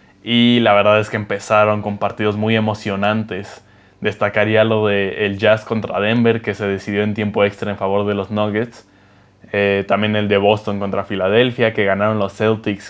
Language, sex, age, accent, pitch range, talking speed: Spanish, male, 20-39, Mexican, 100-110 Hz, 180 wpm